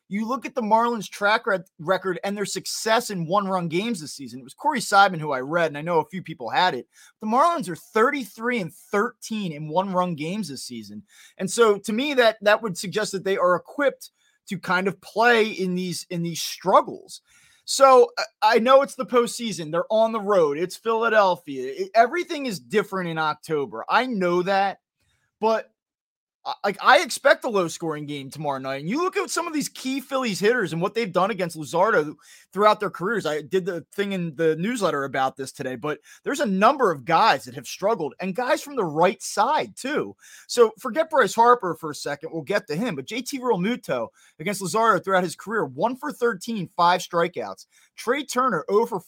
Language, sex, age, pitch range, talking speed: English, male, 20-39, 175-235 Hz, 205 wpm